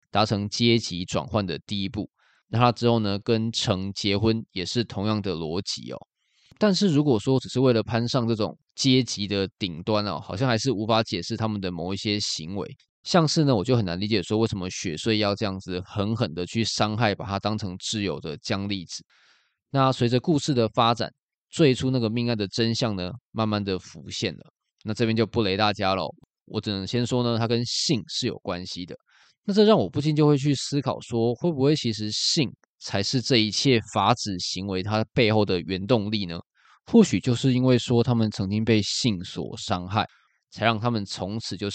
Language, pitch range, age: Chinese, 100-120 Hz, 20-39